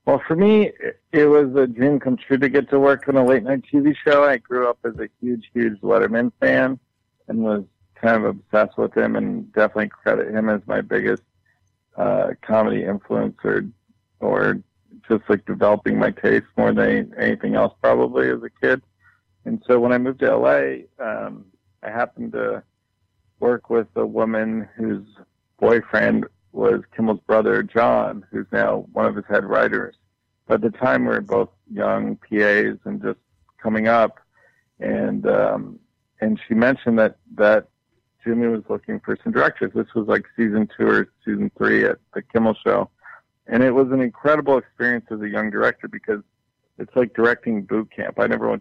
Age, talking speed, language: 50-69, 175 wpm, English